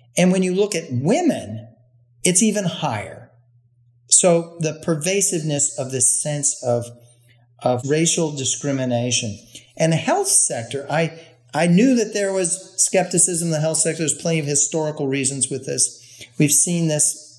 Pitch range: 120-160 Hz